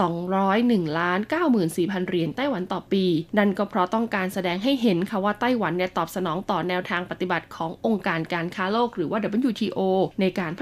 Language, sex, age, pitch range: Thai, female, 20-39, 175-220 Hz